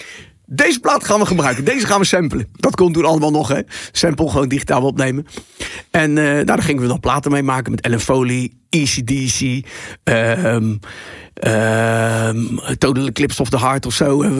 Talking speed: 180 wpm